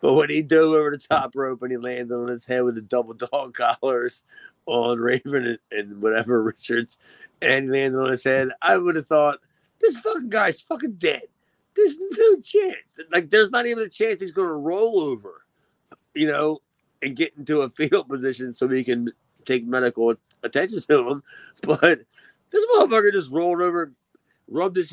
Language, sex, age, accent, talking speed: English, male, 50-69, American, 185 wpm